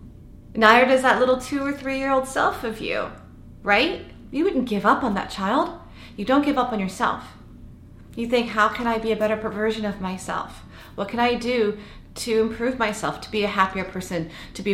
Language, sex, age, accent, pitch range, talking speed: English, female, 30-49, American, 180-230 Hz, 200 wpm